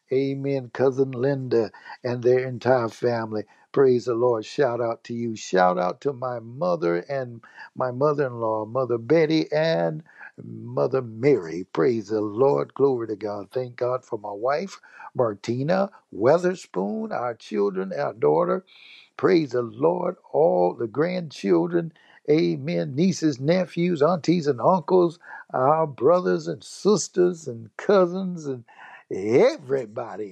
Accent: American